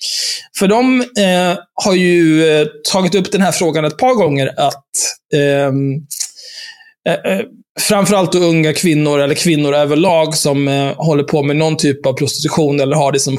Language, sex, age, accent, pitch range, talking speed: Swedish, male, 20-39, native, 145-190 Hz, 160 wpm